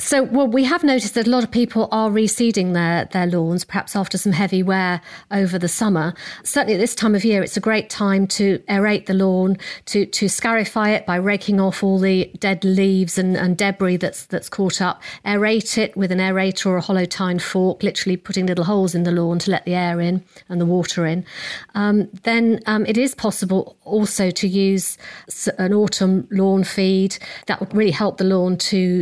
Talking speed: 205 wpm